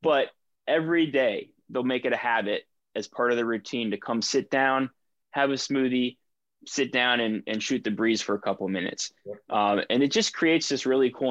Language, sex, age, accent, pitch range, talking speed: English, male, 20-39, American, 105-130 Hz, 210 wpm